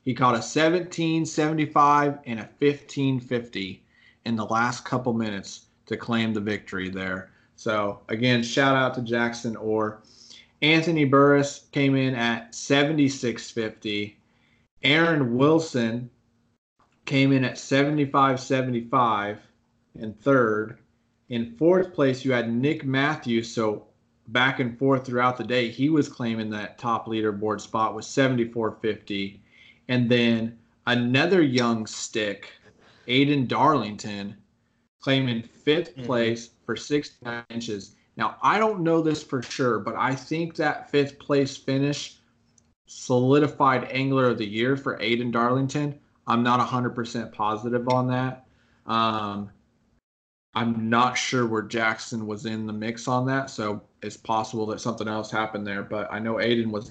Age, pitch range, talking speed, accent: 30-49, 110-135 Hz, 135 wpm, American